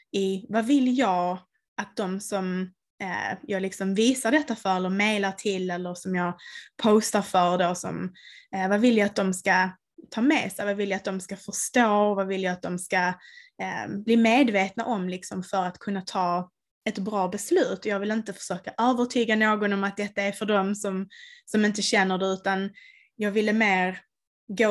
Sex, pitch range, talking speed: female, 185-225 Hz, 195 wpm